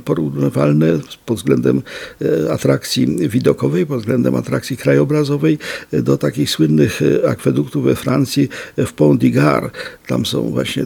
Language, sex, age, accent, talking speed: Polish, male, 50-69, native, 115 wpm